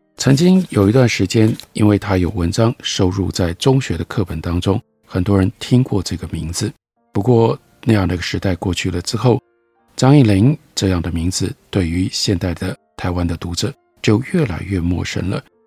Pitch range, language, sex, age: 90-130 Hz, Chinese, male, 50-69